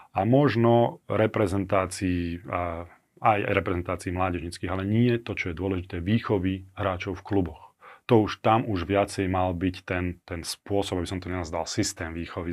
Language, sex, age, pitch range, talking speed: Slovak, male, 30-49, 90-105 Hz, 165 wpm